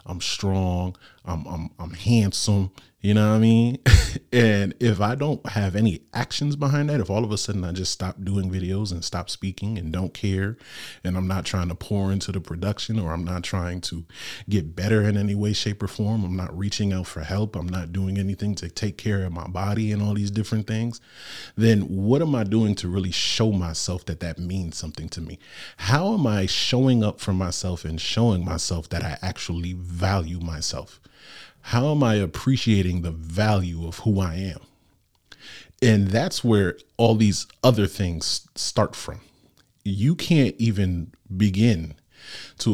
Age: 30-49